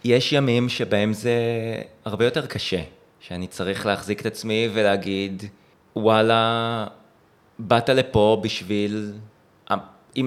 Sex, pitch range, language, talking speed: male, 95-110 Hz, Hebrew, 105 wpm